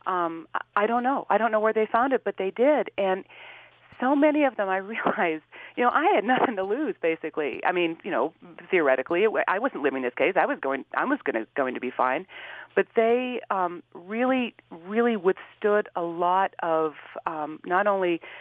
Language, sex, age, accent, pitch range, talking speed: English, female, 40-59, American, 160-220 Hz, 210 wpm